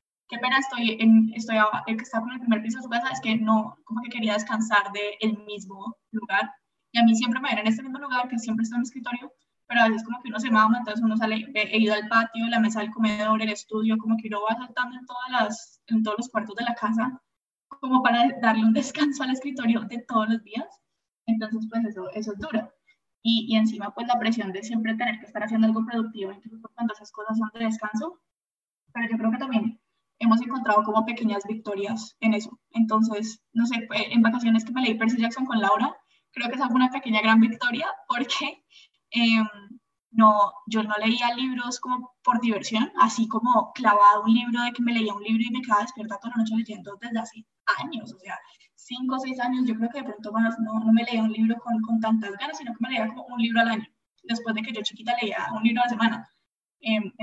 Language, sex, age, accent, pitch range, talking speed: Spanish, female, 10-29, Colombian, 220-240 Hz, 235 wpm